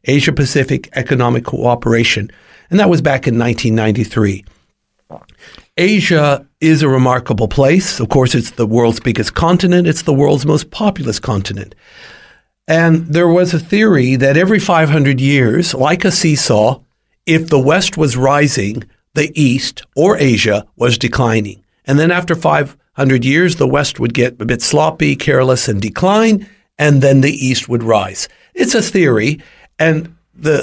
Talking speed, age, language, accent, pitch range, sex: 150 wpm, 60-79, English, American, 120-160 Hz, male